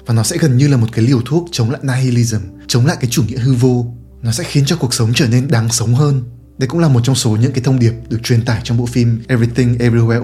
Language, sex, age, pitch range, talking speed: Vietnamese, male, 20-39, 115-140 Hz, 285 wpm